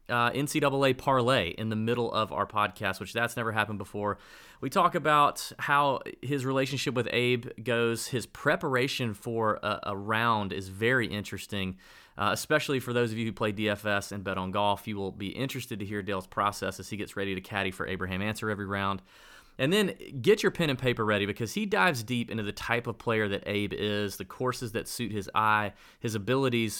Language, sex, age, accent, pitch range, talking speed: English, male, 30-49, American, 100-125 Hz, 205 wpm